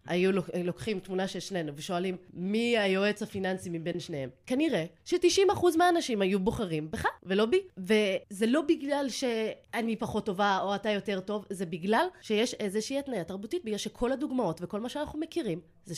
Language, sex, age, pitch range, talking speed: Hebrew, female, 20-39, 175-245 Hz, 160 wpm